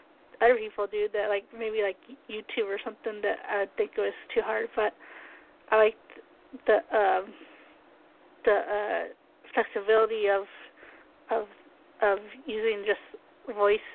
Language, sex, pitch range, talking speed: English, female, 210-305 Hz, 130 wpm